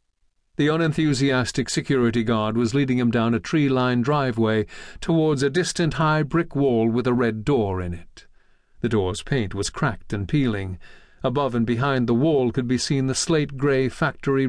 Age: 50-69